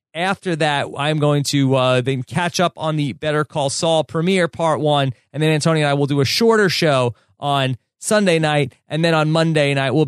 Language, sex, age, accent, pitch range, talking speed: English, male, 30-49, American, 125-160 Hz, 215 wpm